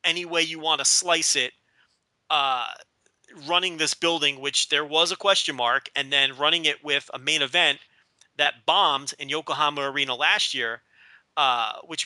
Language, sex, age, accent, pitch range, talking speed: English, male, 30-49, American, 140-170 Hz, 170 wpm